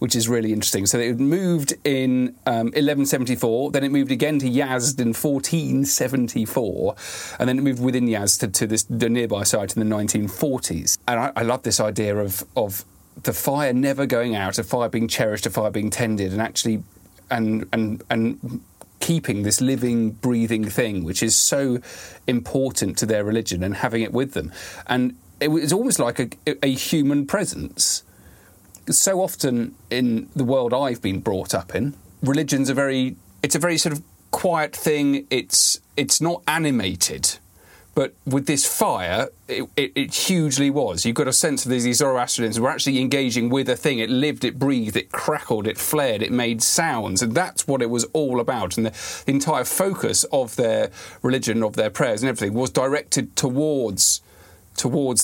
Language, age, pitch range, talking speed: English, 40-59, 110-140 Hz, 180 wpm